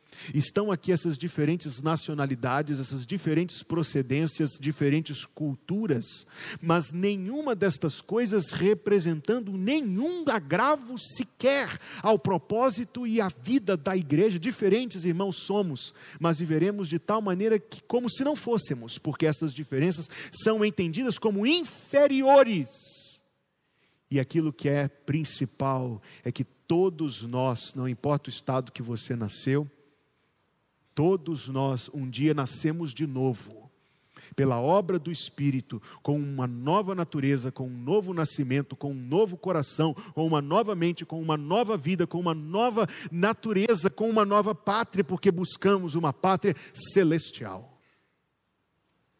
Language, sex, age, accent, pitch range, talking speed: Portuguese, male, 40-59, Brazilian, 135-195 Hz, 125 wpm